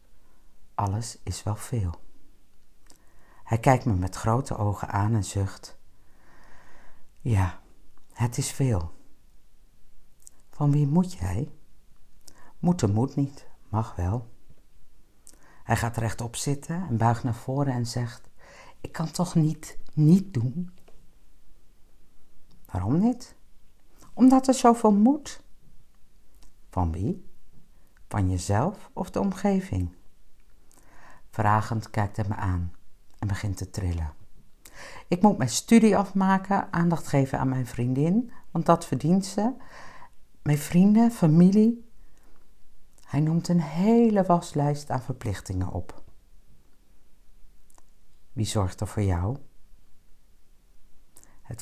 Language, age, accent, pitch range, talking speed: Dutch, 50-69, Dutch, 100-160 Hz, 110 wpm